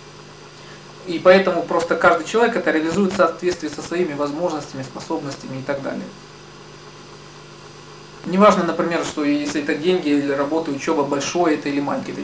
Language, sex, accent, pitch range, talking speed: Russian, male, native, 145-175 Hz, 150 wpm